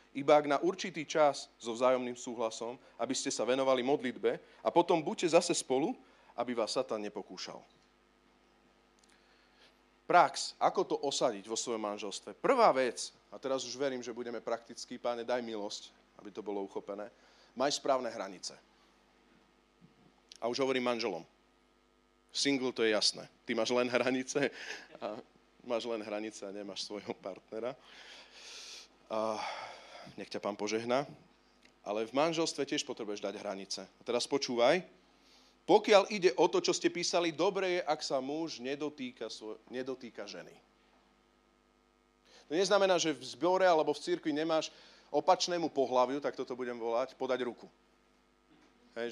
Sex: male